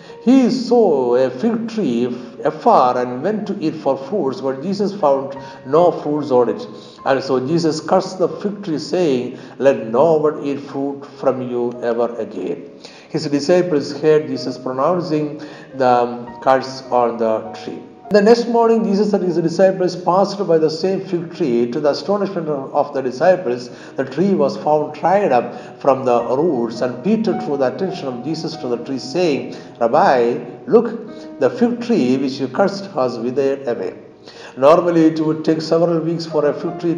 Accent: native